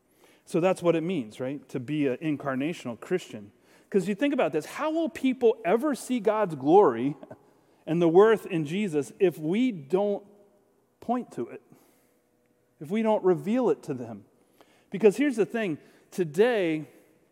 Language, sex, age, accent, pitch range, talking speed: English, male, 40-59, American, 155-210 Hz, 160 wpm